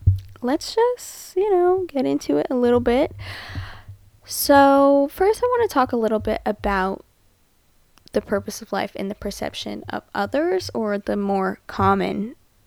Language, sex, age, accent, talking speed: English, female, 20-39, American, 155 wpm